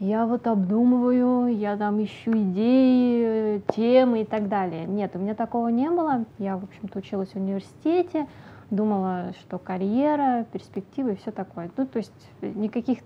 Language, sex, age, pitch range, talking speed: Russian, female, 20-39, 195-235 Hz, 155 wpm